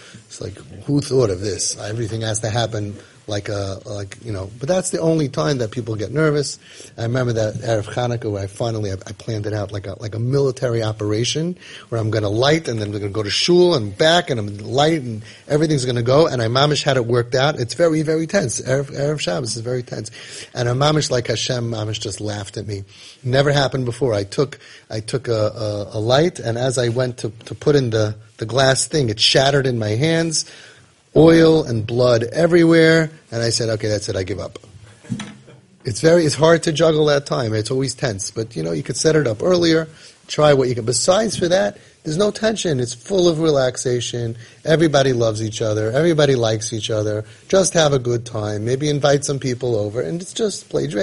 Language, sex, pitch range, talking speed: English, male, 110-150 Hz, 220 wpm